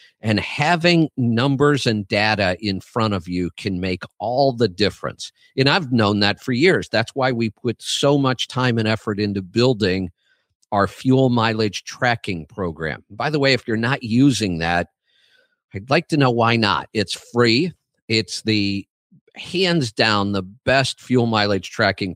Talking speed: 165 wpm